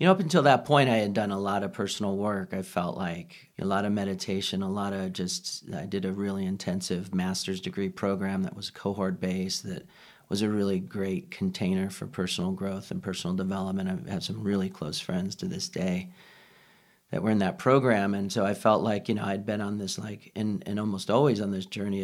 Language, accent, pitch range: English, American, 95-110 Hz